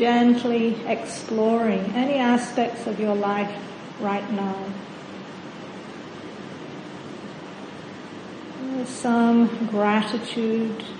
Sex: female